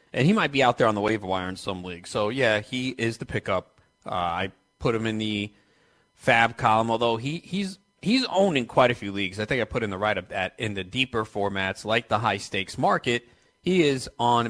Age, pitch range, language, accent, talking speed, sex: 30-49, 105-130 Hz, English, American, 230 wpm, male